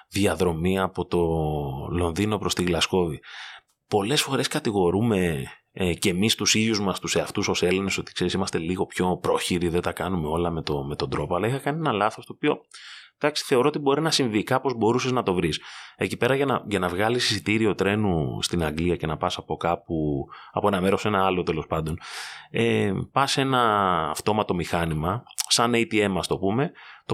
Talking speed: 190 wpm